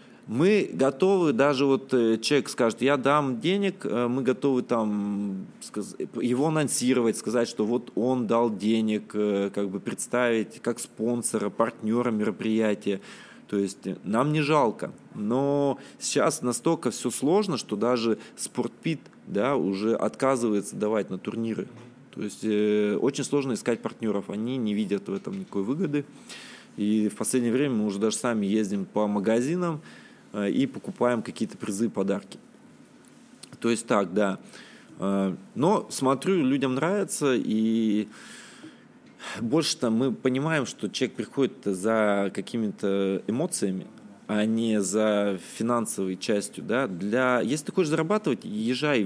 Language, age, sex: Russian, 20-39, male